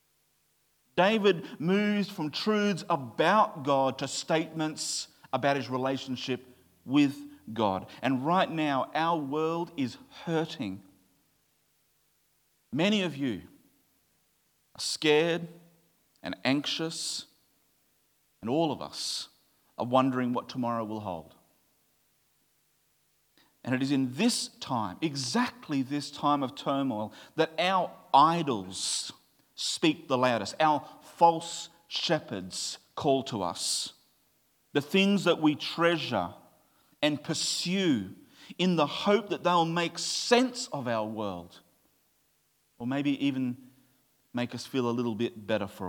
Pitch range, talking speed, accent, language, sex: 120-165 Hz, 115 wpm, Australian, English, male